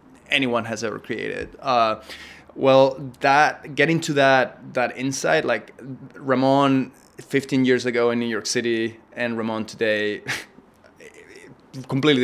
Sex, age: male, 20-39